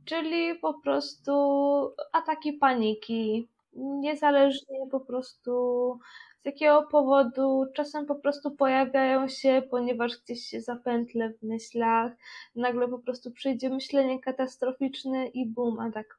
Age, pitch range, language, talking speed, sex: 20-39, 245-285 Hz, Polish, 115 wpm, female